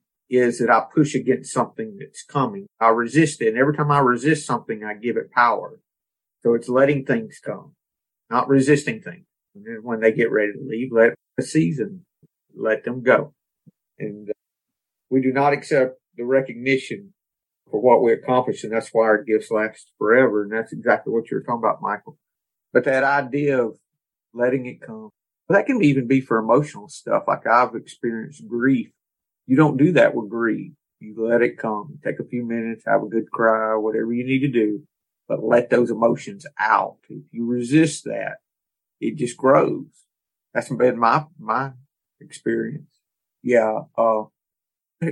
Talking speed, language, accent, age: 175 wpm, English, American, 50-69